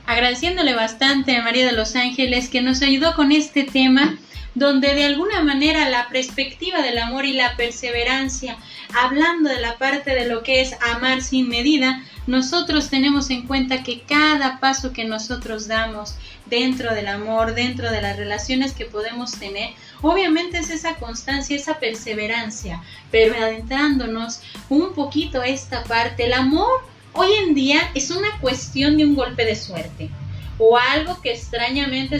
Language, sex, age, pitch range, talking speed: Spanish, female, 30-49, 235-300 Hz, 160 wpm